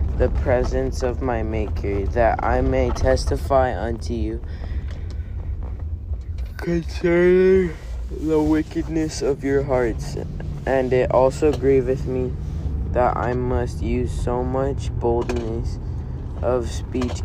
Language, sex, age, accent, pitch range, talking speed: English, male, 20-39, American, 85-125 Hz, 110 wpm